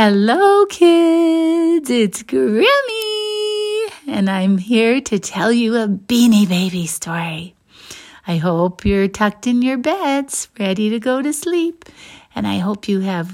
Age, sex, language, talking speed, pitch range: 60-79, female, English, 140 wpm, 195-270 Hz